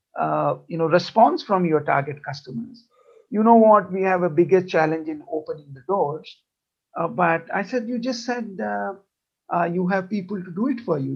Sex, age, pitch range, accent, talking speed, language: male, 50-69, 165-215 Hz, Indian, 200 wpm, English